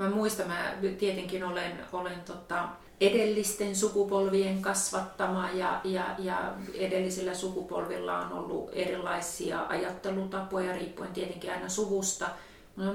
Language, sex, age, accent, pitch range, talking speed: Finnish, female, 30-49, native, 175-200 Hz, 110 wpm